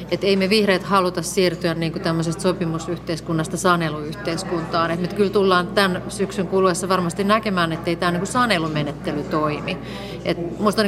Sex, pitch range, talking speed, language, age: female, 170-200 Hz, 150 wpm, Finnish, 30-49